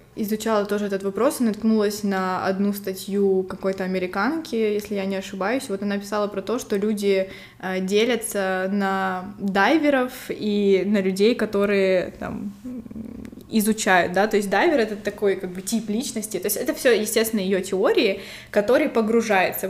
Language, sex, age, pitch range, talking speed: Russian, female, 20-39, 195-220 Hz, 150 wpm